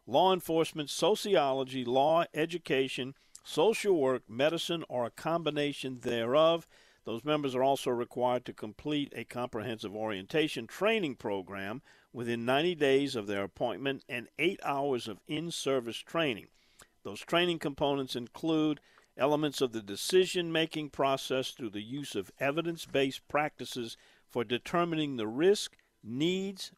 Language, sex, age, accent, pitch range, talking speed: English, male, 50-69, American, 125-160 Hz, 125 wpm